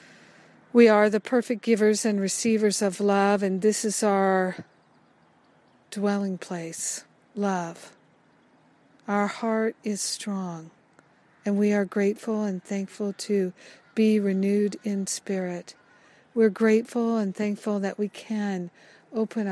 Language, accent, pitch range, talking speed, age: English, American, 190-215 Hz, 120 wpm, 50-69